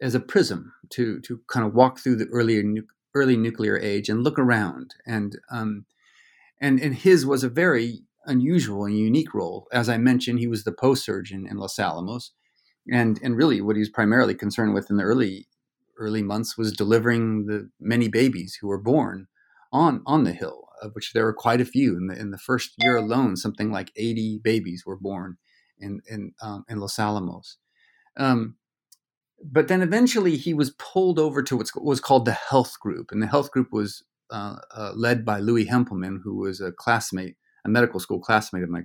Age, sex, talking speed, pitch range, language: 40-59, male, 200 wpm, 105-130 Hz, English